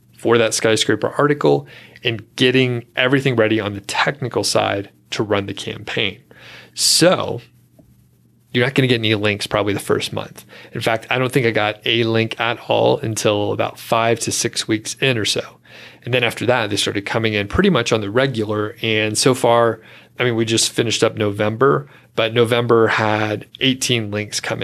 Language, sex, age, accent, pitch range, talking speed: English, male, 30-49, American, 110-125 Hz, 190 wpm